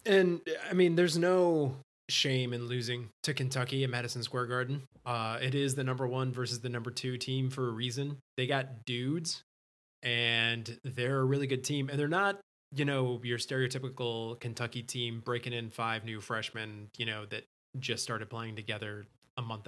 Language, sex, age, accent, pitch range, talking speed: English, male, 20-39, American, 115-140 Hz, 185 wpm